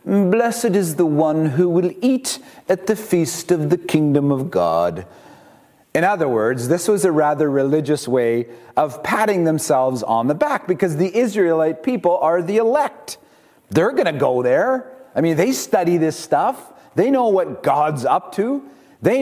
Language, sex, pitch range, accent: English, male, 135-210 Hz, American